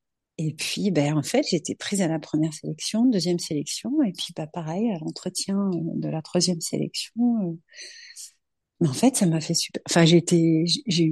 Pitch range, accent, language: 160-205 Hz, French, French